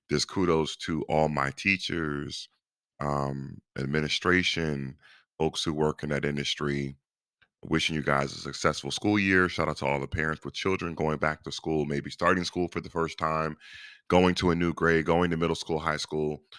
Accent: American